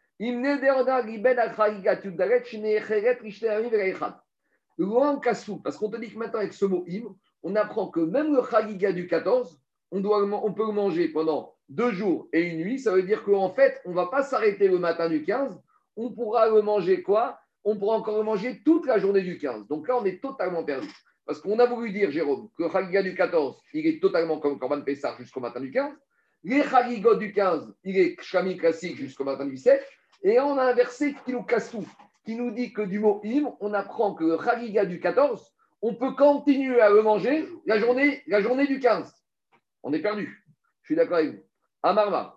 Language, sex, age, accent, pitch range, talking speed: French, male, 50-69, French, 170-245 Hz, 200 wpm